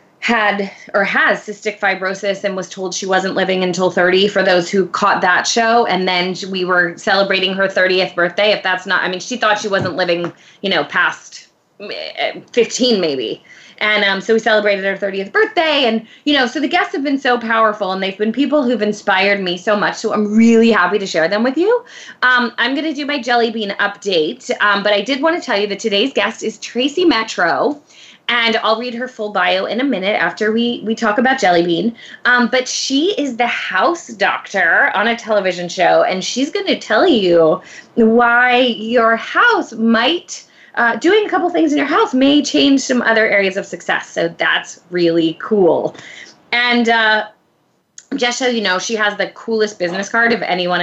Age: 20-39